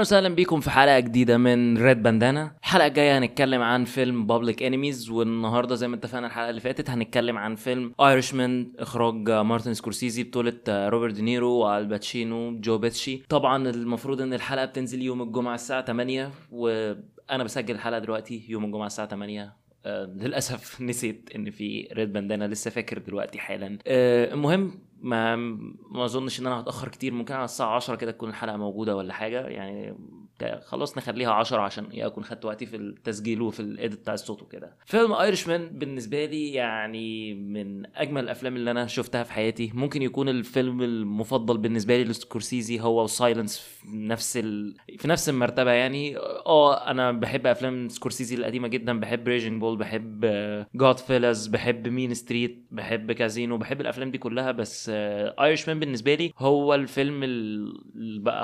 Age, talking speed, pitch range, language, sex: 20-39, 160 wpm, 115-130 Hz, Arabic, male